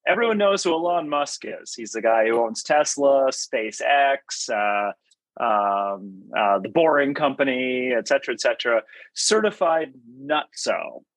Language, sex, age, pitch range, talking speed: English, male, 30-49, 120-190 Hz, 135 wpm